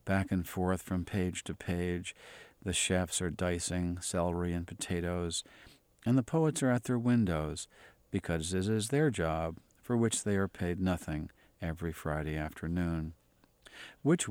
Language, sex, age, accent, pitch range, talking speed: English, male, 50-69, American, 85-100 Hz, 150 wpm